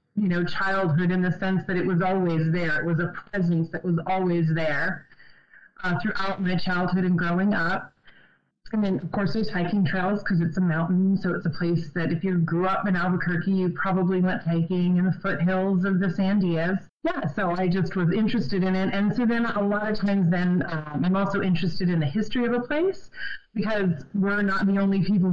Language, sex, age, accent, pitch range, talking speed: English, female, 30-49, American, 165-195 Hz, 215 wpm